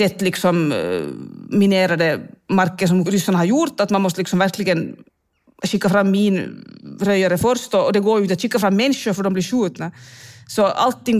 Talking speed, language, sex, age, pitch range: 180 wpm, Swedish, female, 30-49, 165-210 Hz